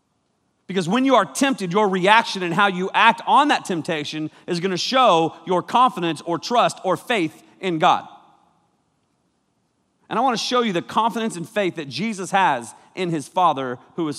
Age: 40-59